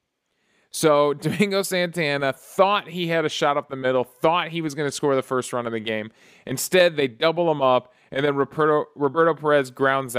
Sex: male